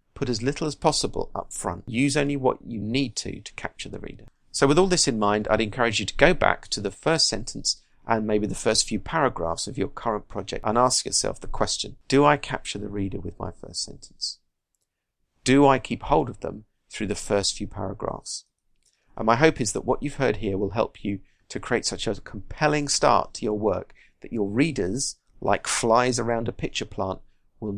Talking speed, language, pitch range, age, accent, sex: 215 wpm, English, 100-140 Hz, 40-59, British, male